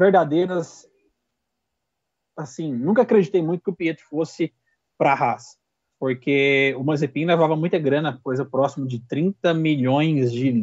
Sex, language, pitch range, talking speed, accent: male, Portuguese, 140-195 Hz, 135 wpm, Brazilian